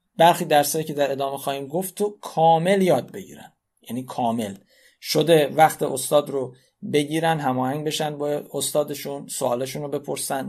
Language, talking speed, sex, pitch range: Persian, 145 wpm, male, 140-185 Hz